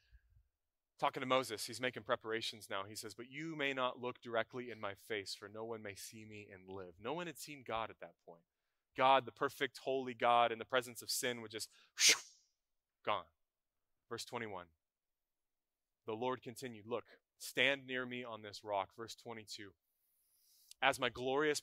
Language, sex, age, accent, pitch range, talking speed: English, male, 20-39, American, 110-150 Hz, 180 wpm